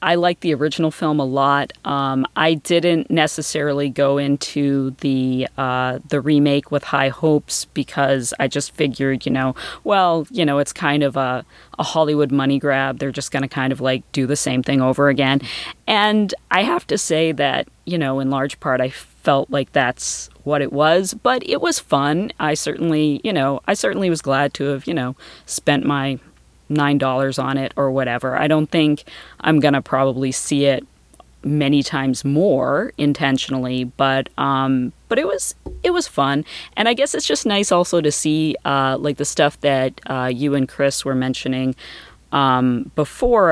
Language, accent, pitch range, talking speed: English, American, 135-155 Hz, 185 wpm